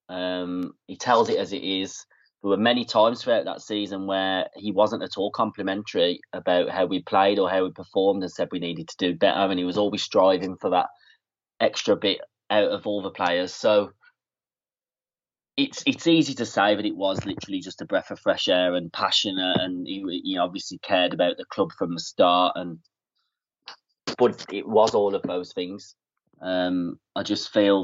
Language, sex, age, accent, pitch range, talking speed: English, male, 30-49, British, 90-105 Hz, 195 wpm